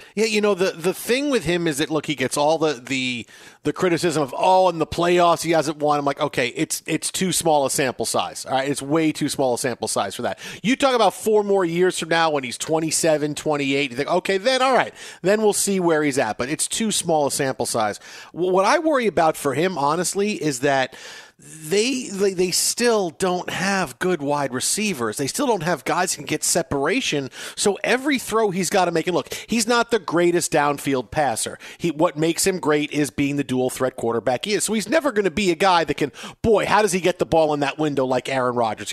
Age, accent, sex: 40-59, American, male